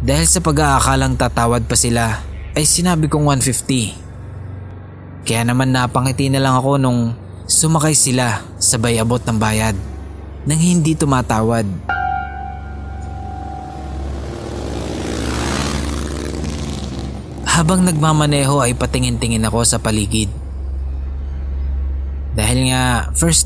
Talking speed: 90 wpm